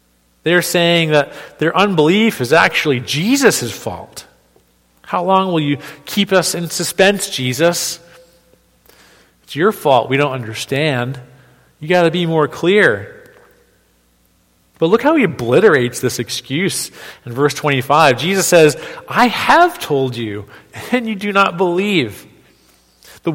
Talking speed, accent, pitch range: 130 wpm, American, 130-185 Hz